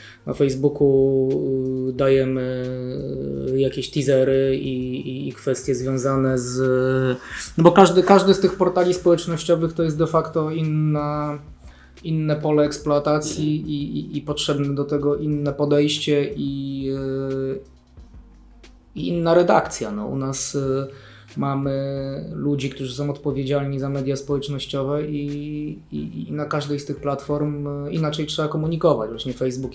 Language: Polish